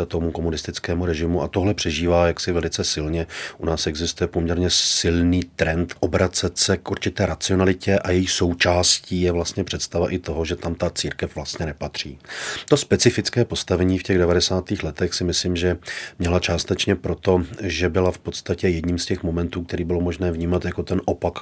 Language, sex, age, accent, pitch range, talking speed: Czech, male, 30-49, native, 85-95 Hz, 175 wpm